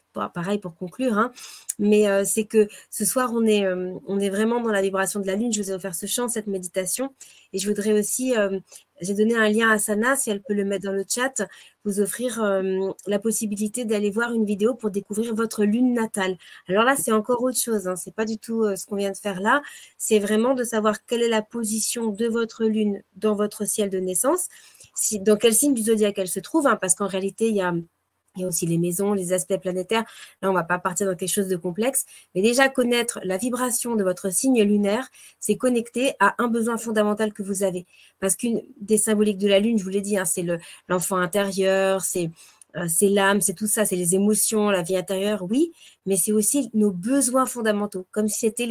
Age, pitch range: 30-49, 195-225 Hz